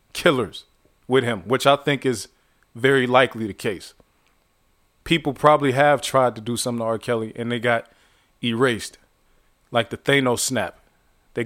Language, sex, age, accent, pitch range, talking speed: English, male, 20-39, American, 120-145 Hz, 155 wpm